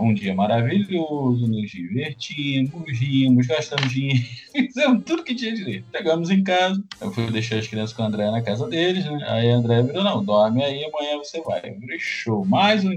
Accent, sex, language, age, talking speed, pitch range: Brazilian, male, Portuguese, 20-39, 195 wpm, 120-165 Hz